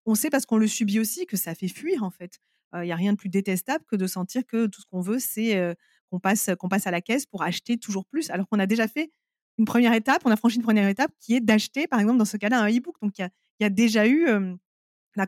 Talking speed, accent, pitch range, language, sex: 290 wpm, French, 195-240 Hz, French, female